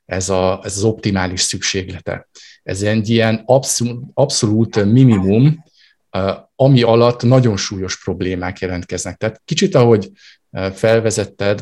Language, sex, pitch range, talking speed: Hungarian, male, 100-115 Hz, 105 wpm